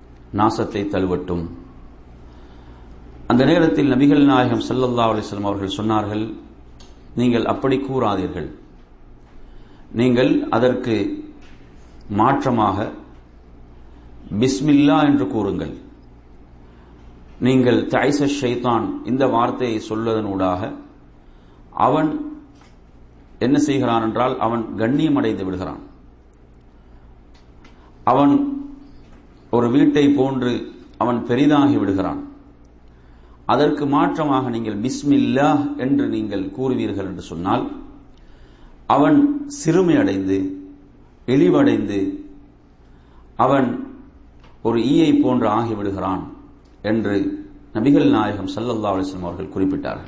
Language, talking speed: English, 75 wpm